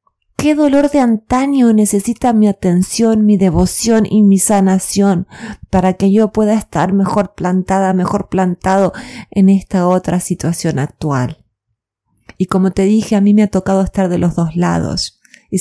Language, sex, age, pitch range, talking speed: Spanish, female, 30-49, 180-210 Hz, 160 wpm